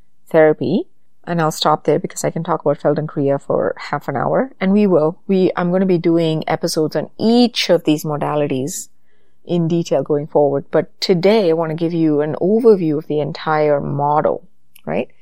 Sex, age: female, 30-49